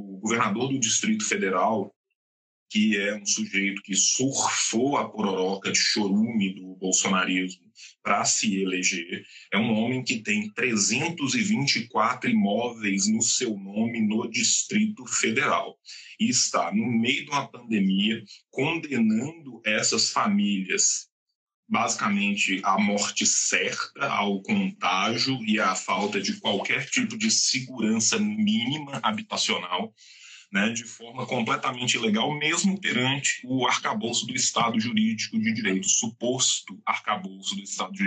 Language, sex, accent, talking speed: Portuguese, male, Brazilian, 120 wpm